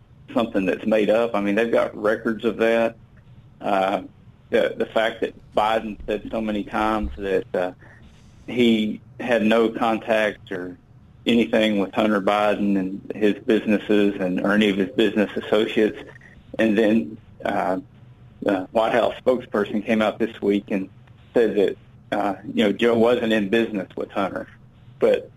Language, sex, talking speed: English, male, 155 wpm